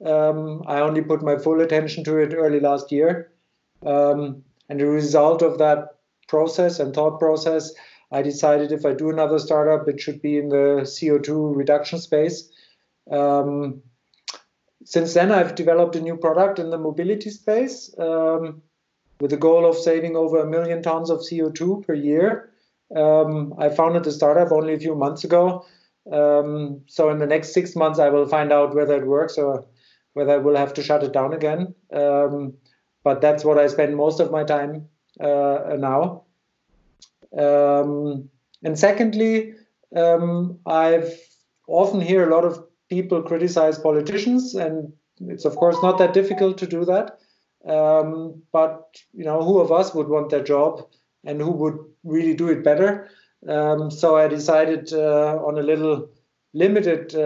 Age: 50-69